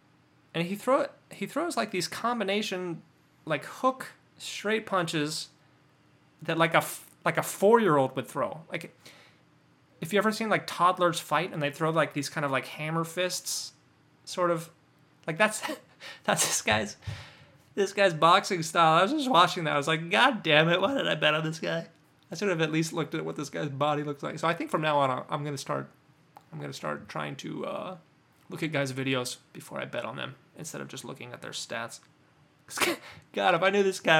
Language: English